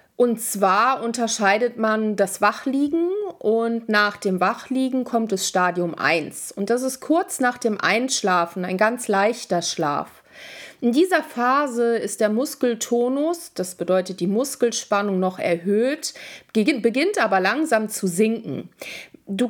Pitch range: 205-270 Hz